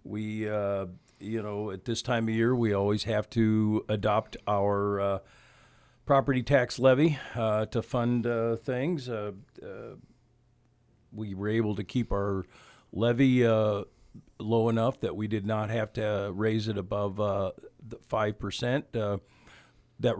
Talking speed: 145 wpm